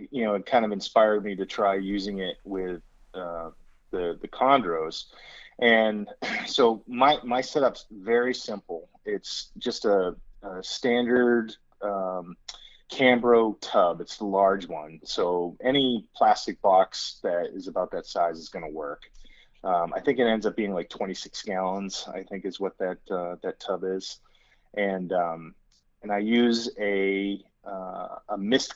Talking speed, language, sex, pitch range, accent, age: 160 wpm, English, male, 95-115 Hz, American, 30-49